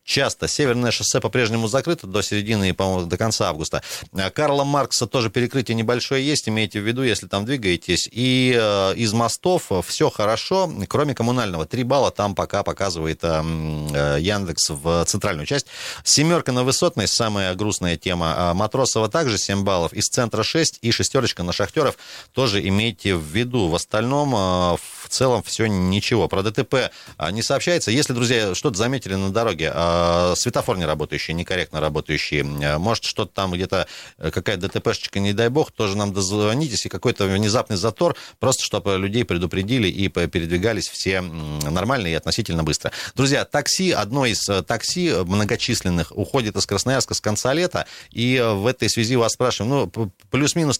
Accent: native